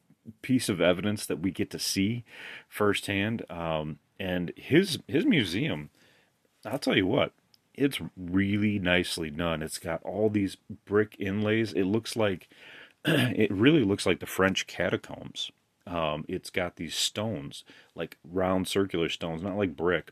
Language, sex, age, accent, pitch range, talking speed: English, male, 30-49, American, 80-100 Hz, 150 wpm